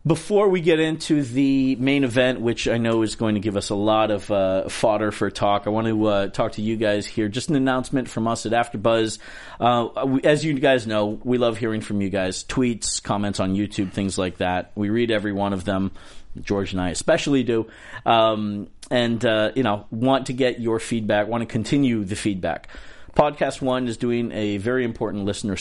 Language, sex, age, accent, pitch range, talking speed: English, male, 40-59, American, 100-125 Hz, 210 wpm